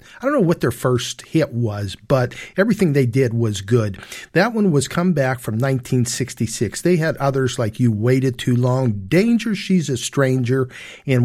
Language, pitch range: English, 125-185 Hz